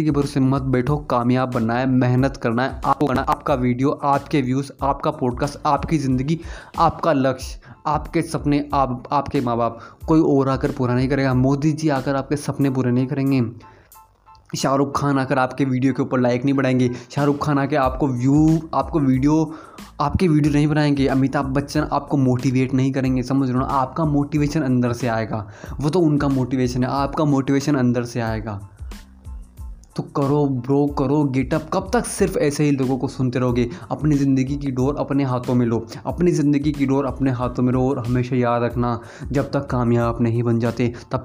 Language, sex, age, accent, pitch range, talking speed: Hindi, male, 20-39, native, 125-145 Hz, 180 wpm